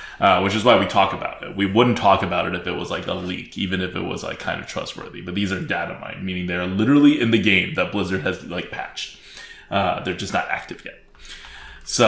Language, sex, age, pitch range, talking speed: English, male, 20-39, 95-130 Hz, 250 wpm